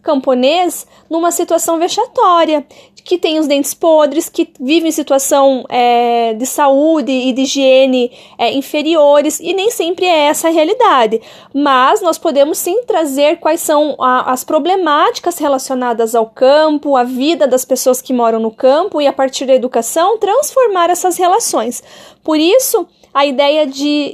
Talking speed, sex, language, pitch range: 145 wpm, female, Portuguese, 280-345 Hz